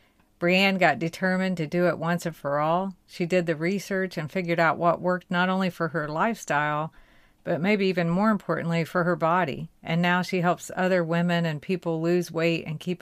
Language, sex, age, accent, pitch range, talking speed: English, female, 50-69, American, 160-180 Hz, 205 wpm